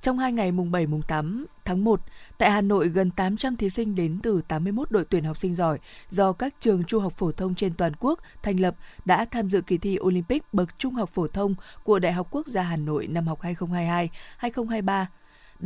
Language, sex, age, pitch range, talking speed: Vietnamese, female, 20-39, 170-215 Hz, 215 wpm